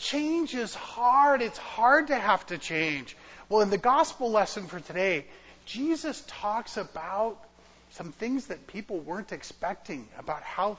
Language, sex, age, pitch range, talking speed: English, male, 40-59, 160-240 Hz, 150 wpm